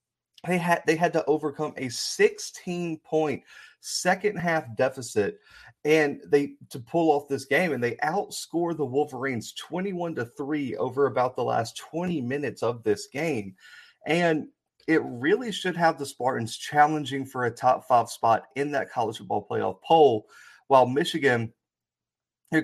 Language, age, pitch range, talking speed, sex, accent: English, 30-49, 110-150 Hz, 150 wpm, male, American